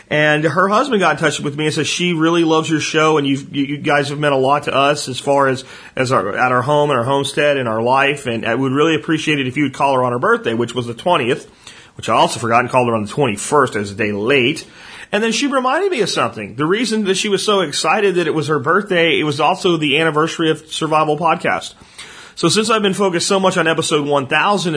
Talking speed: 260 wpm